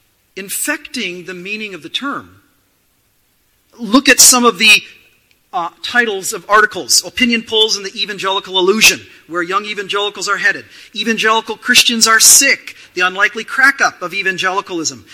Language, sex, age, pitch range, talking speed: English, male, 40-59, 180-250 Hz, 140 wpm